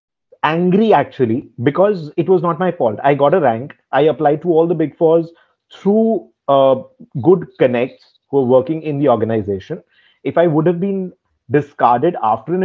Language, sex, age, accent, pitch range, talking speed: English, male, 30-49, Indian, 125-170 Hz, 175 wpm